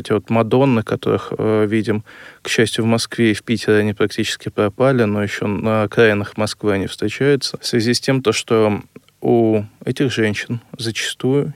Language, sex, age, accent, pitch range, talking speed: Russian, male, 20-39, native, 105-125 Hz, 165 wpm